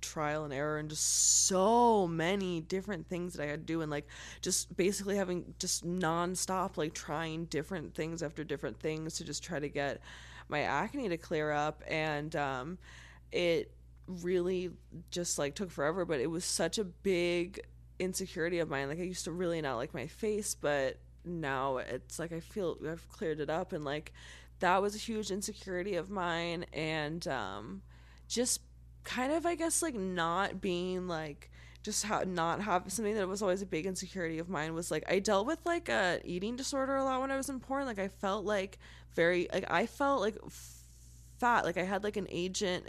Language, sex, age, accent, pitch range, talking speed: English, female, 20-39, American, 150-190 Hz, 195 wpm